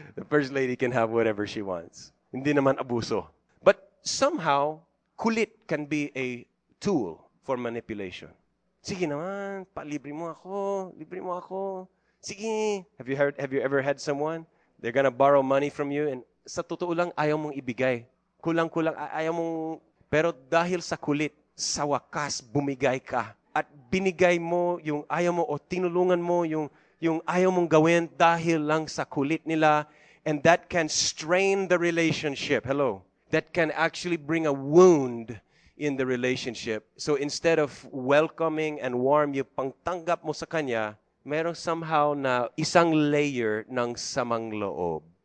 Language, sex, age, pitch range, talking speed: English, male, 30-49, 125-165 Hz, 150 wpm